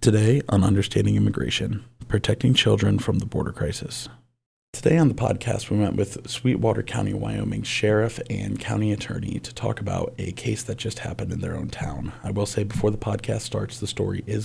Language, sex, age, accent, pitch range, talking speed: English, male, 30-49, American, 105-125 Hz, 190 wpm